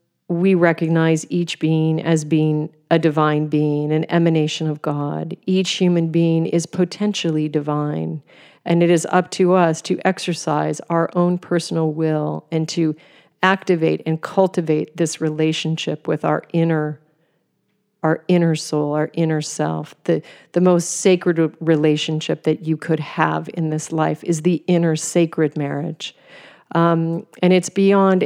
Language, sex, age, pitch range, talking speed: English, female, 40-59, 155-175 Hz, 145 wpm